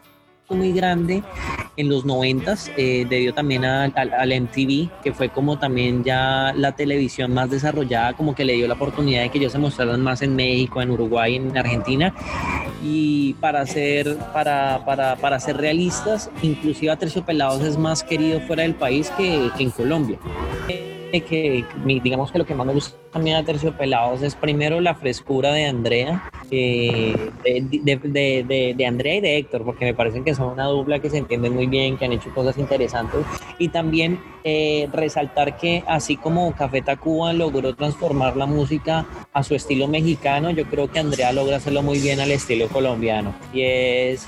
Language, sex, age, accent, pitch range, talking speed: Spanish, male, 20-39, Colombian, 130-150 Hz, 185 wpm